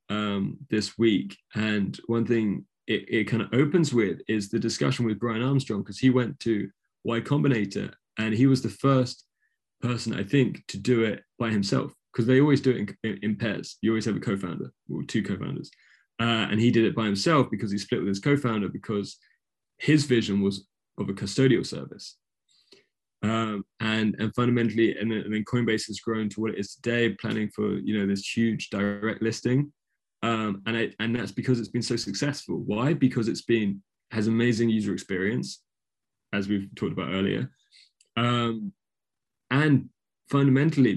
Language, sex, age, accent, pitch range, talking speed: English, male, 20-39, British, 105-125 Hz, 175 wpm